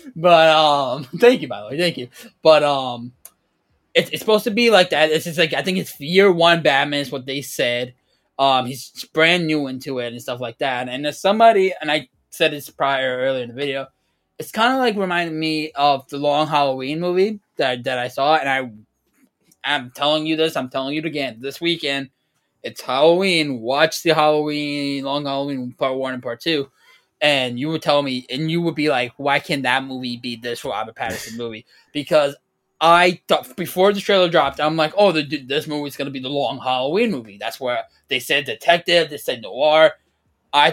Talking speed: 210 wpm